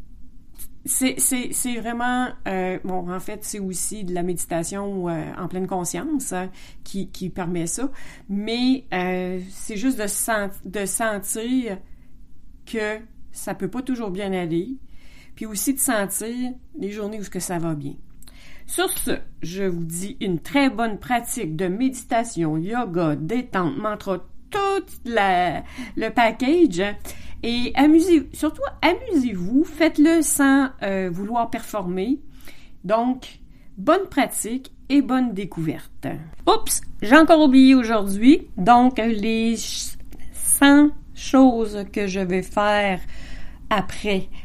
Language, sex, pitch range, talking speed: French, female, 180-255 Hz, 130 wpm